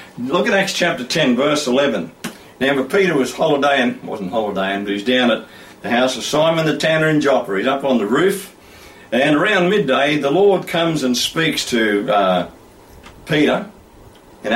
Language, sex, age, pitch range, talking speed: English, male, 50-69, 115-160 Hz, 175 wpm